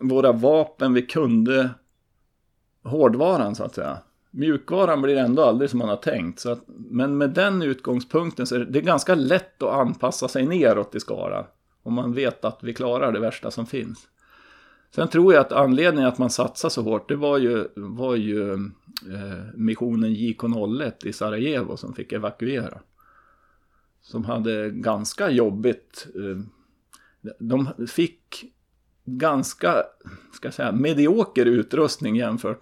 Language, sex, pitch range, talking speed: Swedish, male, 115-150 Hz, 155 wpm